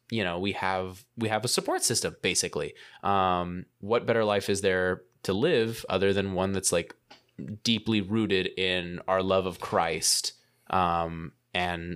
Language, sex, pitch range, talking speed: English, male, 90-115 Hz, 160 wpm